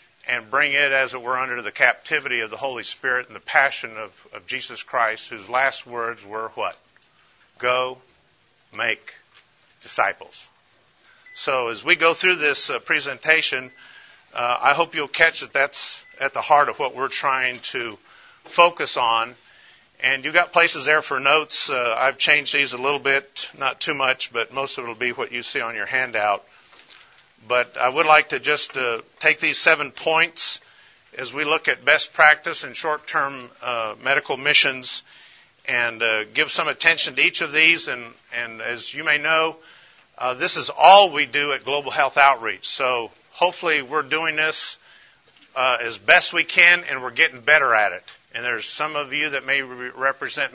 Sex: male